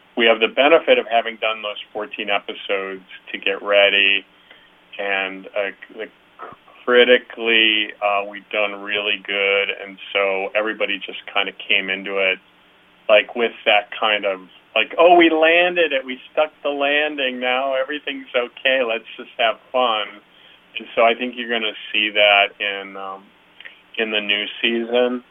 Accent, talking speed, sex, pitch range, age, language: American, 155 wpm, male, 100-125 Hz, 30-49, English